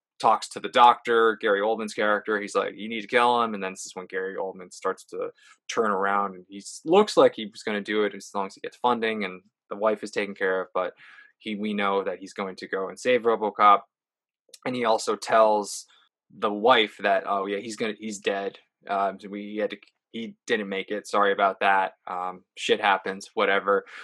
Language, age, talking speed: English, 20-39, 220 wpm